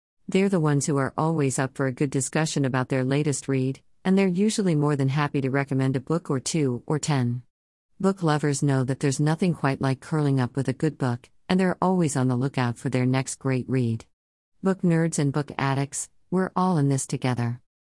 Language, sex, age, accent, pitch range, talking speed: English, female, 50-69, American, 130-165 Hz, 215 wpm